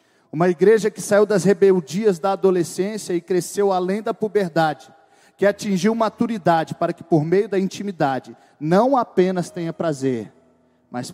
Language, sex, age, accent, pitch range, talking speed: Portuguese, male, 40-59, Brazilian, 160-210 Hz, 145 wpm